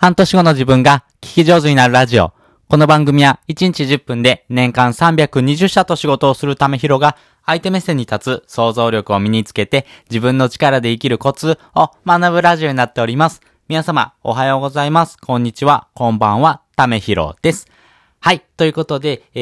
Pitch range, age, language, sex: 100-145 Hz, 20-39, Japanese, male